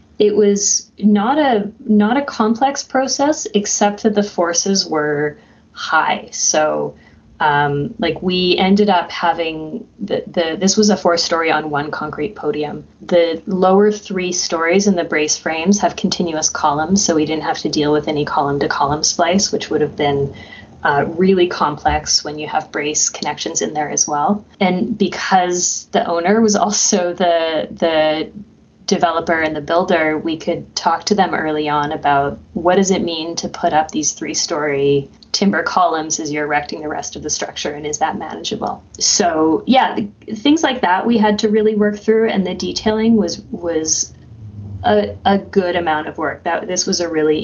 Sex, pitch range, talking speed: female, 155-205 Hz, 175 wpm